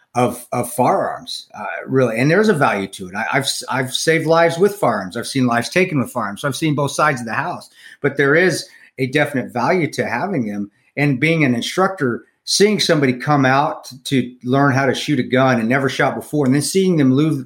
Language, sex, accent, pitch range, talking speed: English, male, American, 125-165 Hz, 220 wpm